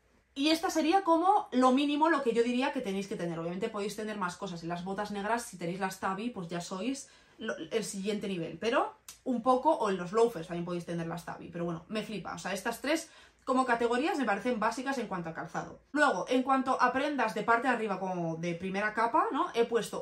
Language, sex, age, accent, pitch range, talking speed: Spanish, female, 20-39, Spanish, 195-245 Hz, 235 wpm